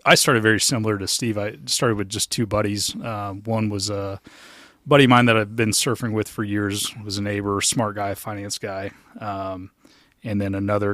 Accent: American